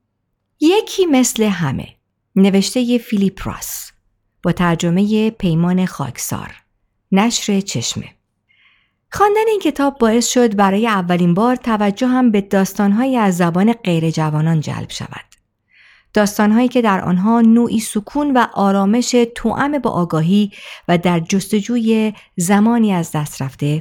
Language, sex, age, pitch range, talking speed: Persian, female, 50-69, 165-230 Hz, 120 wpm